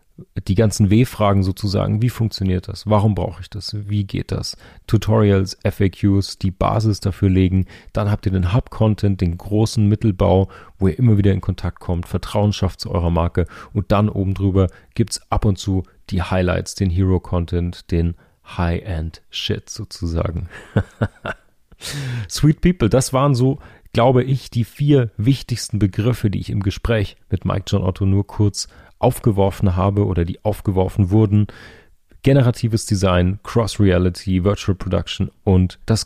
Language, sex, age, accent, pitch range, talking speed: English, male, 40-59, German, 95-110 Hz, 150 wpm